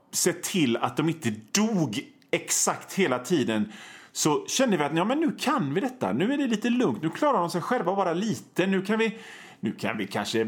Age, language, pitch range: 30-49, Swedish, 135-215 Hz